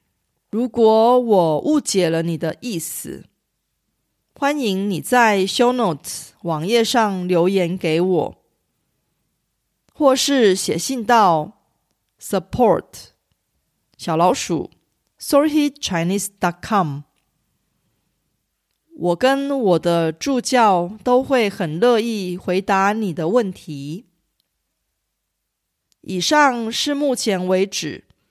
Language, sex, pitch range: Korean, female, 175-250 Hz